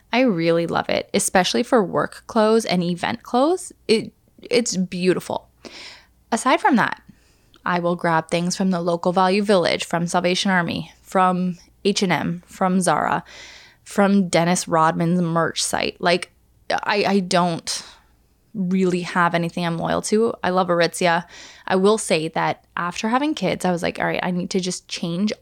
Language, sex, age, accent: English, female, 10-29, American